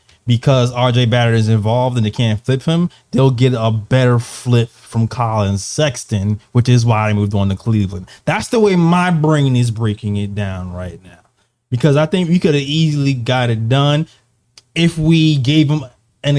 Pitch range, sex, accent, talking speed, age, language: 110-135 Hz, male, American, 190 wpm, 20-39, English